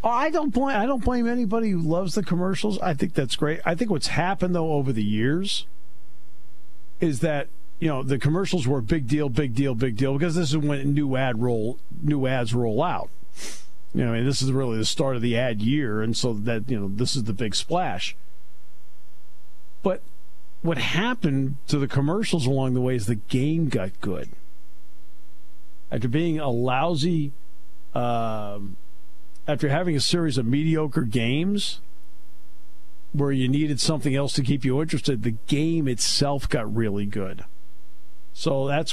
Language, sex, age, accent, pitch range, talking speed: English, male, 50-69, American, 95-155 Hz, 180 wpm